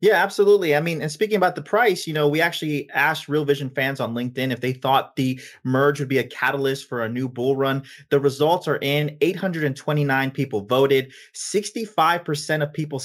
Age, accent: 30-49, American